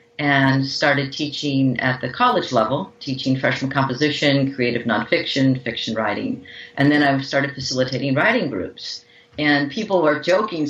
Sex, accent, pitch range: female, American, 135-175 Hz